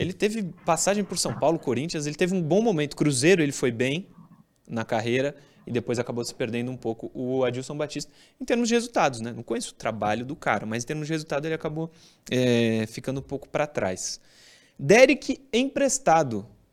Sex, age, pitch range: male, 20-39, 130-180 Hz